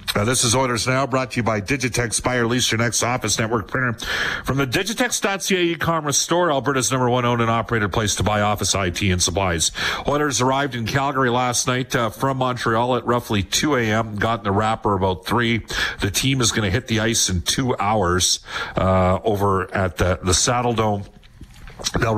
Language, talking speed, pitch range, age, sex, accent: English, 195 wpm, 100-120 Hz, 50-69, male, American